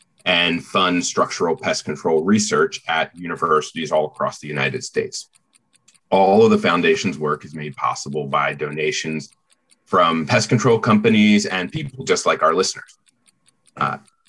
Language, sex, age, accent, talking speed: English, male, 30-49, American, 145 wpm